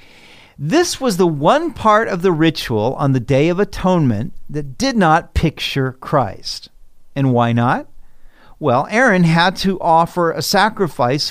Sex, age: male, 50-69